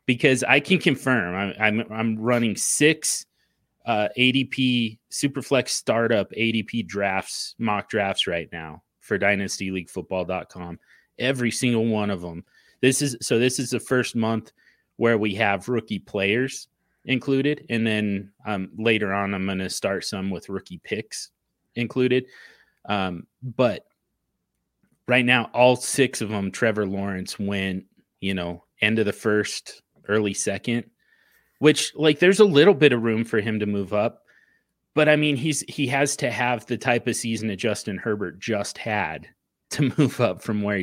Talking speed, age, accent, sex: 160 wpm, 30-49, American, male